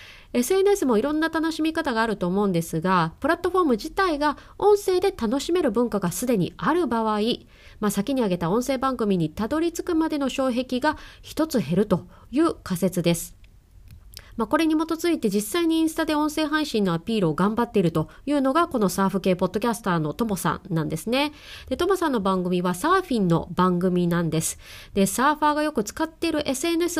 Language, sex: Japanese, female